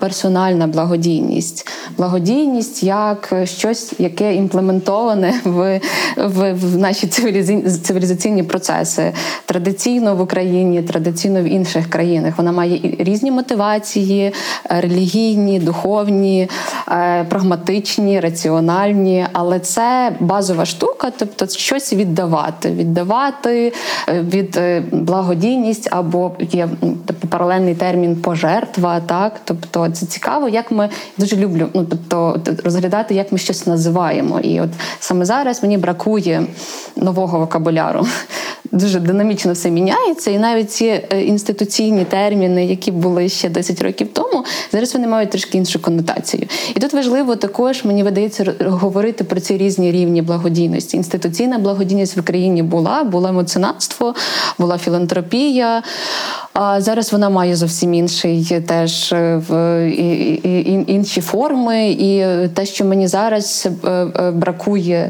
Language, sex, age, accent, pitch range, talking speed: Ukrainian, female, 20-39, native, 175-205 Hz, 115 wpm